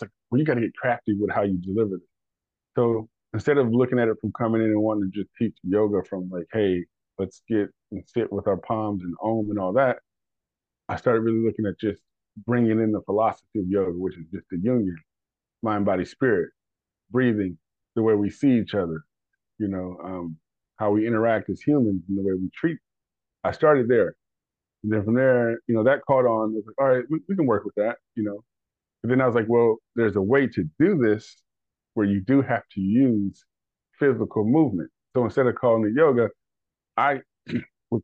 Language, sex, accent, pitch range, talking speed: English, male, American, 100-120 Hz, 210 wpm